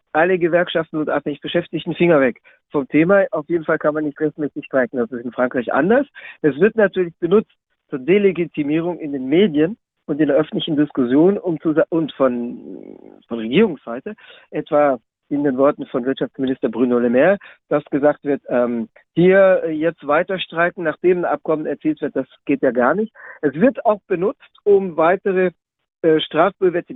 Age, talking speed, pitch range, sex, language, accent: 50-69, 175 wpm, 140-175 Hz, male, German, German